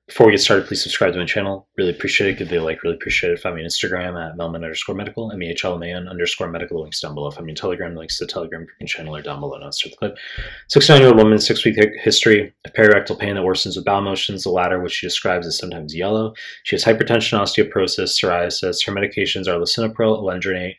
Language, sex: English, male